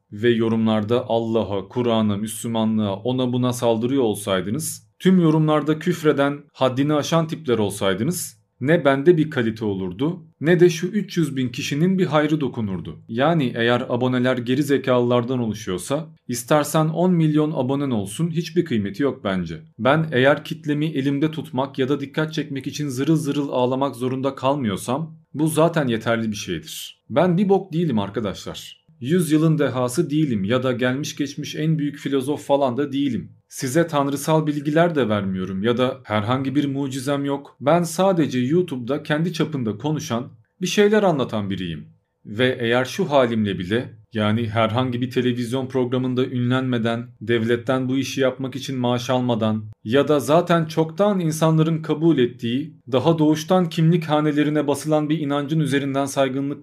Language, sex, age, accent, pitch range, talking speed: Turkish, male, 40-59, native, 120-155 Hz, 145 wpm